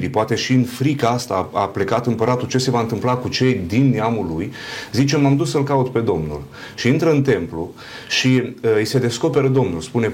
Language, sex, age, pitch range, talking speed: Romanian, male, 30-49, 115-140 Hz, 215 wpm